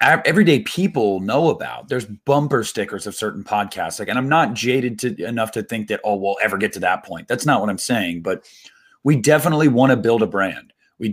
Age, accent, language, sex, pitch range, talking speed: 30-49, American, English, male, 110-145 Hz, 220 wpm